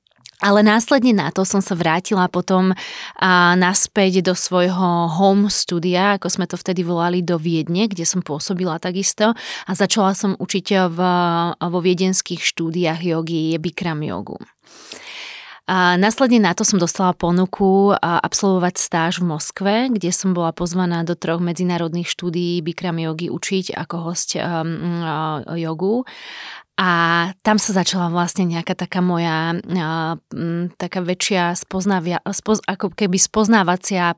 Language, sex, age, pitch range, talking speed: Slovak, female, 30-49, 175-190 Hz, 135 wpm